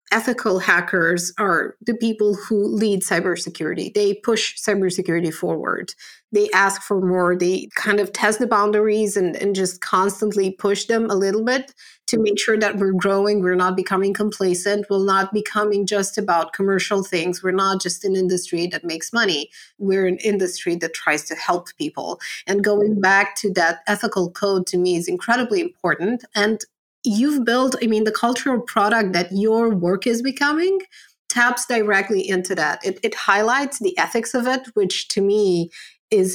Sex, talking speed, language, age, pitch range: female, 170 wpm, English, 30-49, 185-225 Hz